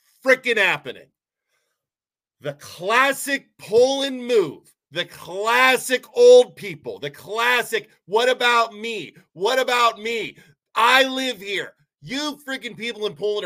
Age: 40-59